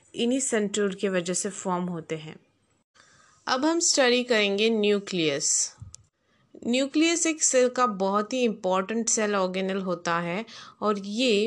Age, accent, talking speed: 20-39, native, 135 wpm